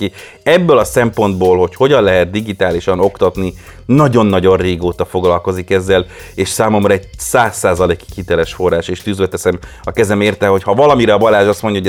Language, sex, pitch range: Hungarian, male, 90-115 Hz